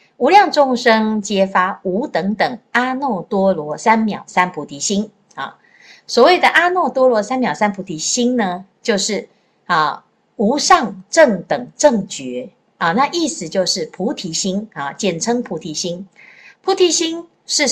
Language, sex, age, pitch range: Chinese, female, 50-69, 190-260 Hz